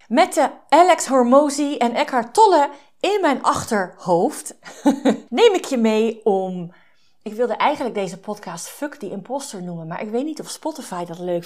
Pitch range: 205-270 Hz